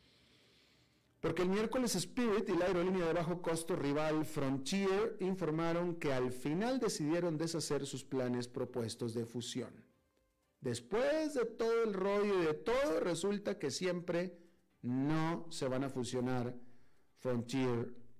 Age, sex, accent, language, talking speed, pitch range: 50-69, male, Mexican, Spanish, 130 wpm, 130-200 Hz